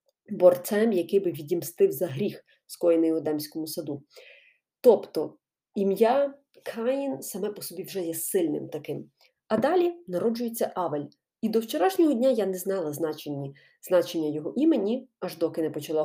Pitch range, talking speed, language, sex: 165-245 Hz, 140 wpm, Ukrainian, female